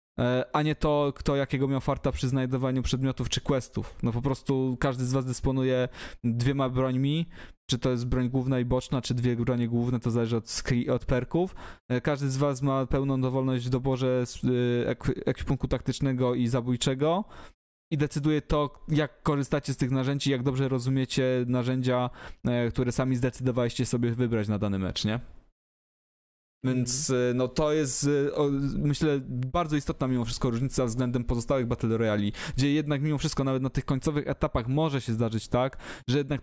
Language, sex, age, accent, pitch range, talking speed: Polish, male, 20-39, native, 125-140 Hz, 165 wpm